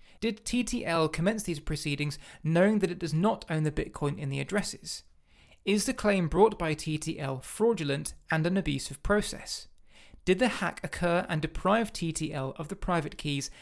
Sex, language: male, English